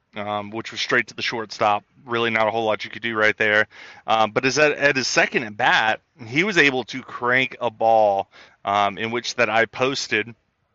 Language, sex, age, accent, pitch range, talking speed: English, male, 30-49, American, 105-120 Hz, 220 wpm